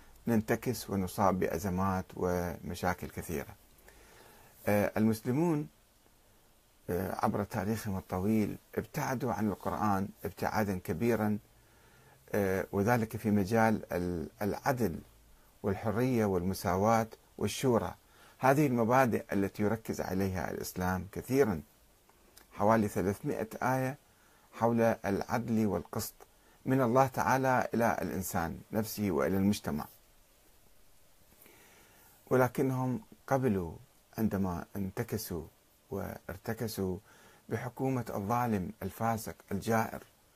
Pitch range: 100-120 Hz